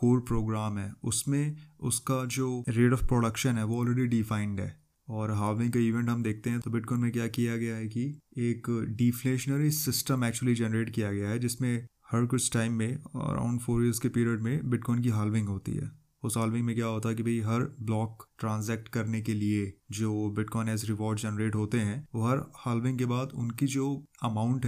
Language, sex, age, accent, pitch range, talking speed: Hindi, male, 20-39, native, 110-125 Hz, 200 wpm